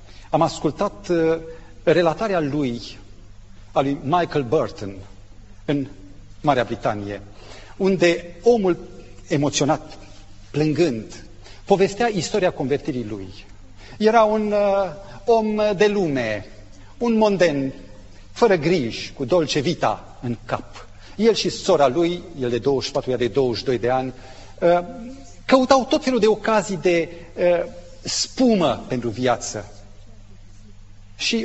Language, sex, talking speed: Romanian, male, 115 wpm